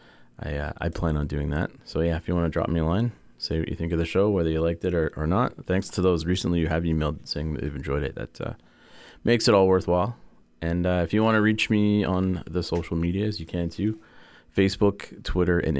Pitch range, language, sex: 75-95 Hz, English, male